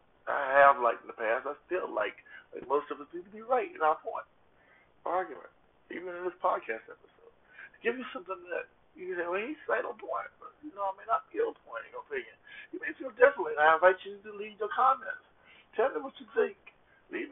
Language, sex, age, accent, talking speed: English, male, 60-79, American, 220 wpm